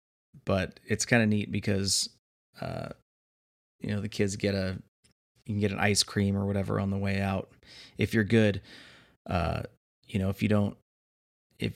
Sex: male